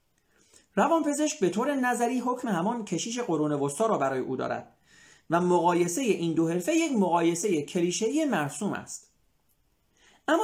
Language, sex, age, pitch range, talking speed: Persian, male, 40-59, 150-220 Hz, 145 wpm